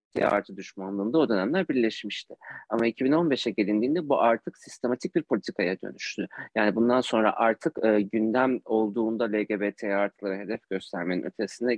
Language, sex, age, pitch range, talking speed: Turkish, male, 40-59, 105-120 Hz, 135 wpm